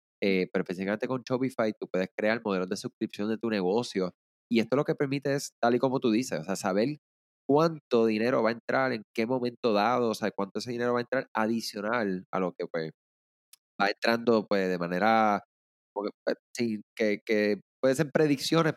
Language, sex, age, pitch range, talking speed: Spanish, male, 20-39, 95-125 Hz, 200 wpm